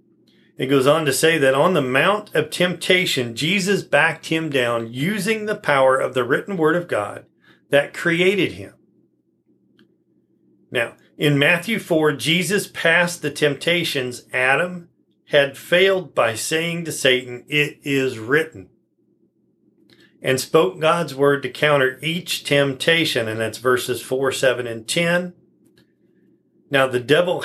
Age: 40-59